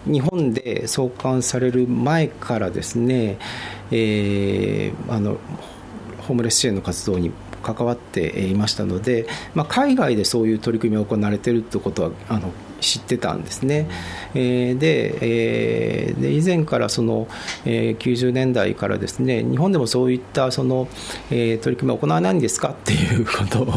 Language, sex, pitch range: Japanese, male, 105-130 Hz